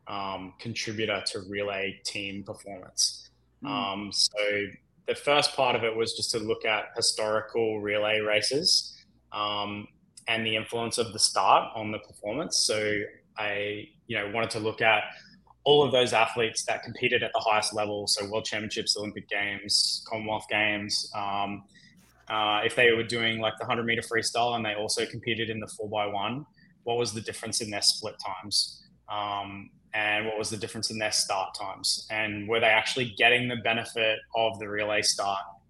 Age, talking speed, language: 20-39, 175 wpm, English